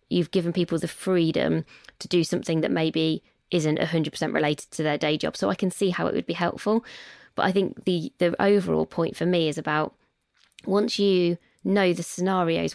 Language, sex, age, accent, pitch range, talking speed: English, female, 20-39, British, 160-185 Hz, 200 wpm